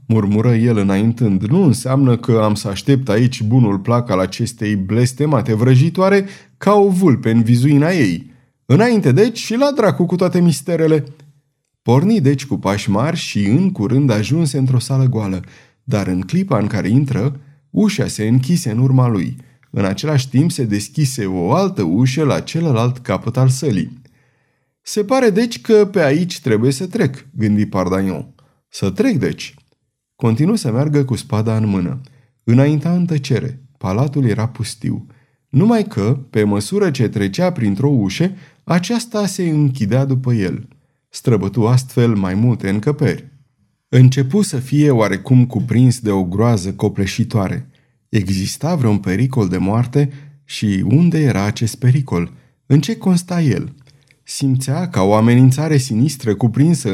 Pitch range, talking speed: 110-150 Hz, 145 wpm